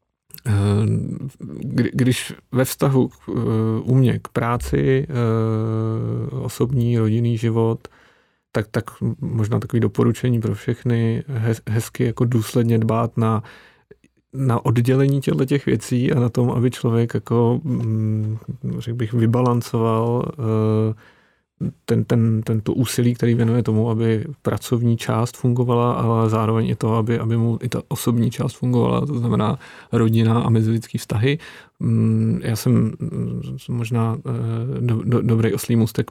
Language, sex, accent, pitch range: Czech, male, native, 110-125 Hz